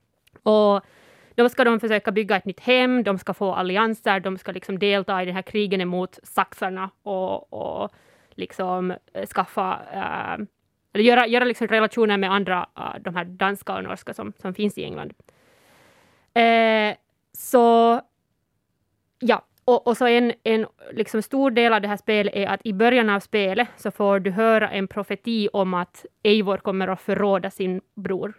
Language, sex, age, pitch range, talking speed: Swedish, female, 20-39, 190-220 Hz, 170 wpm